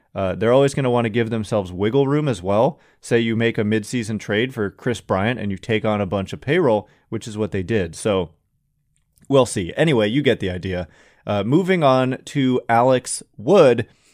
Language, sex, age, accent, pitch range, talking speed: English, male, 30-49, American, 110-135 Hz, 210 wpm